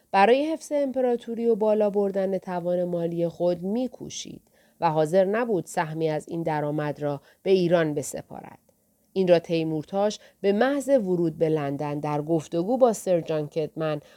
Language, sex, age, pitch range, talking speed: Persian, female, 40-59, 165-215 Hz, 150 wpm